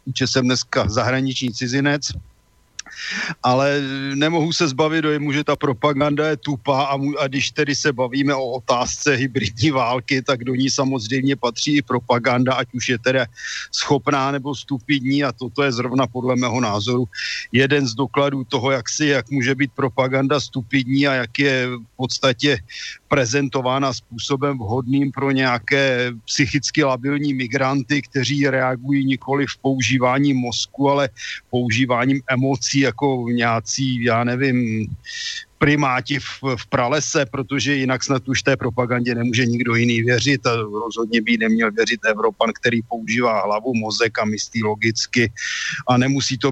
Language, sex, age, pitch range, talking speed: Slovak, male, 50-69, 125-140 Hz, 145 wpm